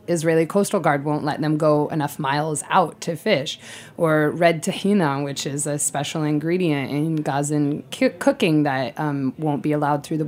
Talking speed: 175 wpm